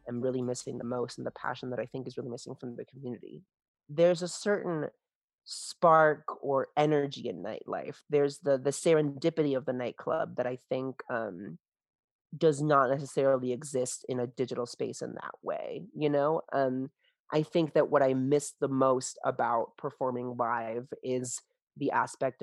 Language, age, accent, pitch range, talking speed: English, 30-49, American, 125-150 Hz, 170 wpm